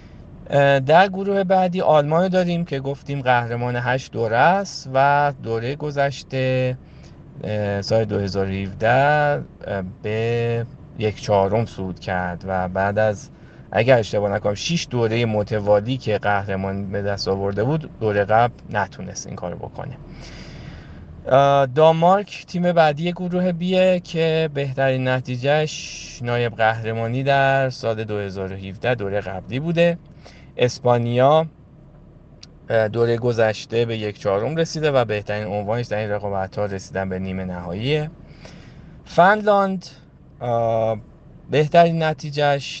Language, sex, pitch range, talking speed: Persian, male, 105-140 Hz, 110 wpm